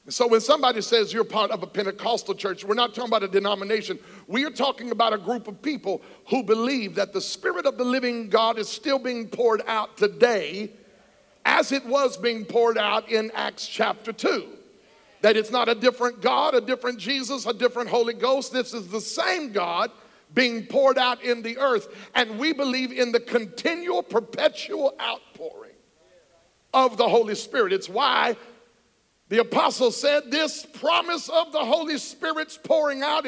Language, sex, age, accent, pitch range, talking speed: English, male, 50-69, American, 235-310 Hz, 175 wpm